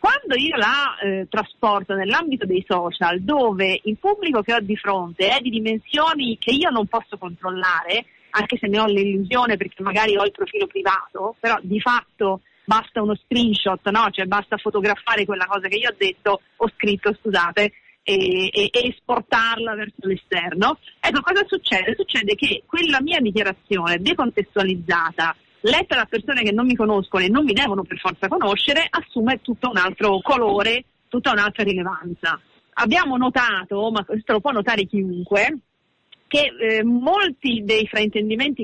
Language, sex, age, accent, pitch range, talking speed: Italian, female, 40-59, native, 200-265 Hz, 160 wpm